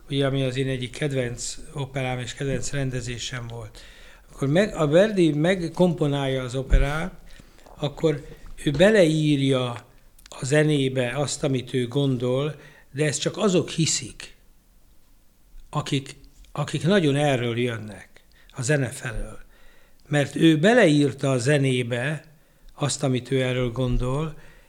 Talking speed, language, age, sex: 115 wpm, Hungarian, 60-79, male